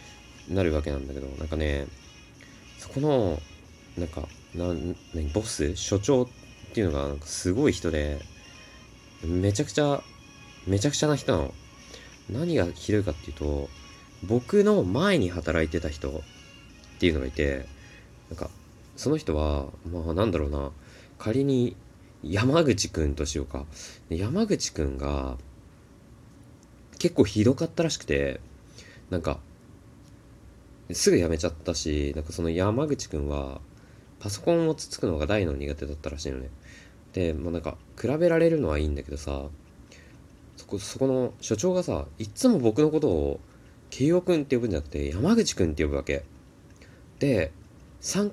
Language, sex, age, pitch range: Japanese, male, 20-39, 75-120 Hz